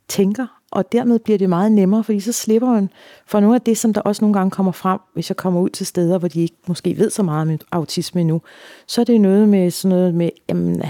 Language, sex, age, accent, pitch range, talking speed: Danish, female, 40-59, native, 165-195 Hz, 260 wpm